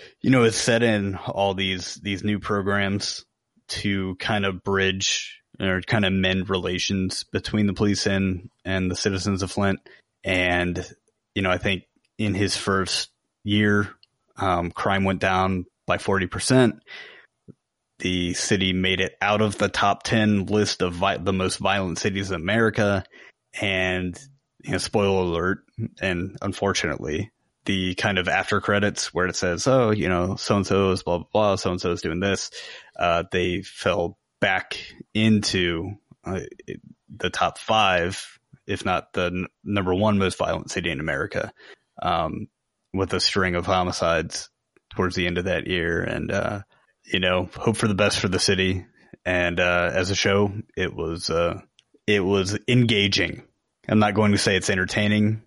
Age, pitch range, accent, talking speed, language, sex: 20-39, 90-105 Hz, American, 165 wpm, English, male